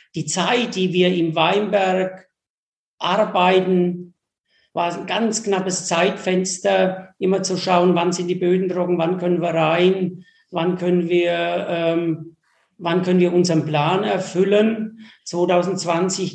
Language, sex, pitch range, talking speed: German, male, 170-185 Hz, 130 wpm